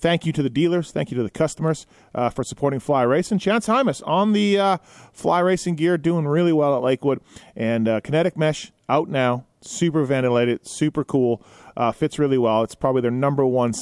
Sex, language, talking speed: male, English, 205 wpm